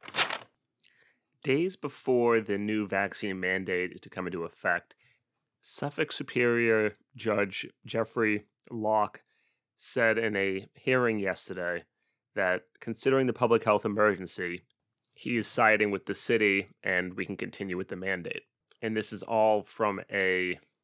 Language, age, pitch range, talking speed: English, 30-49, 90-110 Hz, 130 wpm